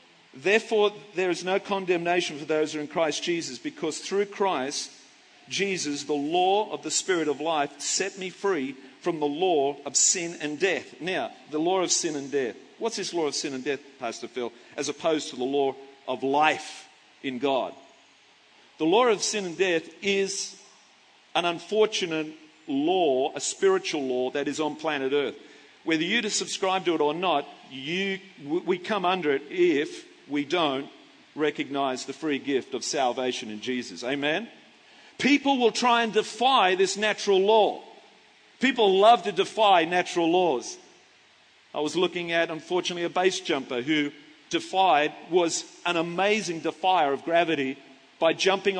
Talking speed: 160 wpm